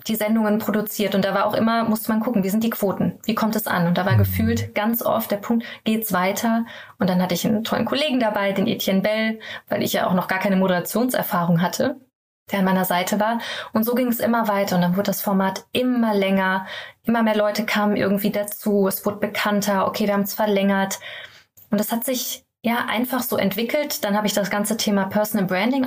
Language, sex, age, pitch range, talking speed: German, female, 20-39, 195-230 Hz, 225 wpm